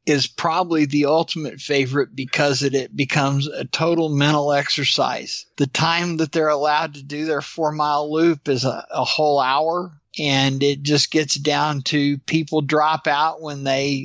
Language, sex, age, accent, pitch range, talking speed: English, male, 50-69, American, 140-160 Hz, 165 wpm